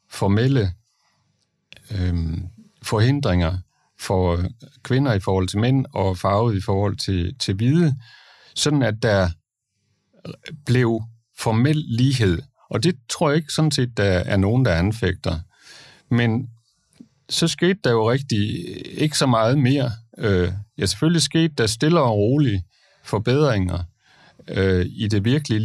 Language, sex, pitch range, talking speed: Danish, male, 100-135 Hz, 135 wpm